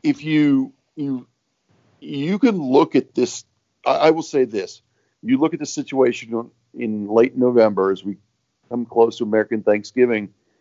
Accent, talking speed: American, 160 wpm